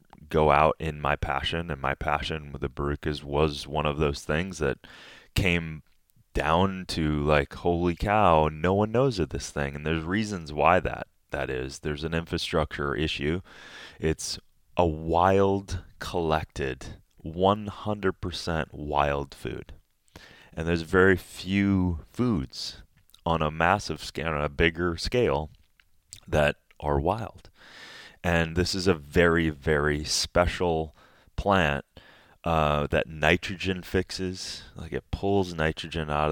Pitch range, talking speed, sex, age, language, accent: 75-90 Hz, 130 wpm, male, 30-49, English, American